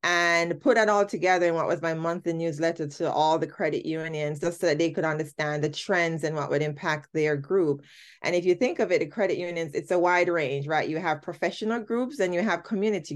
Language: English